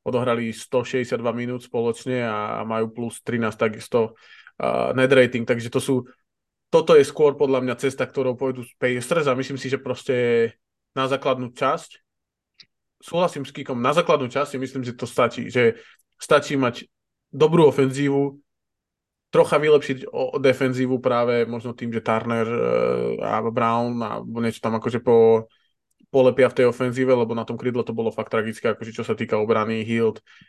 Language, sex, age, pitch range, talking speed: Slovak, male, 20-39, 115-130 Hz, 165 wpm